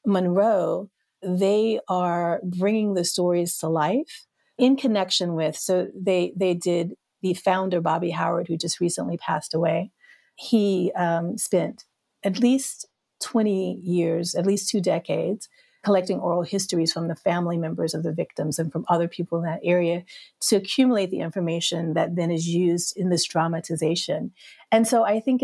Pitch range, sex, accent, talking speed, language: 170-195 Hz, female, American, 160 wpm, English